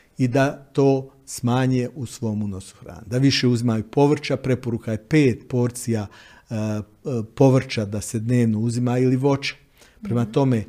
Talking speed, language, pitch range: 150 wpm, Croatian, 110-125 Hz